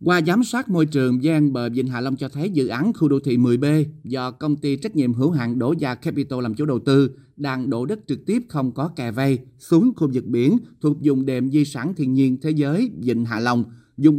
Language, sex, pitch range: Vietnamese, male, 130-155 Hz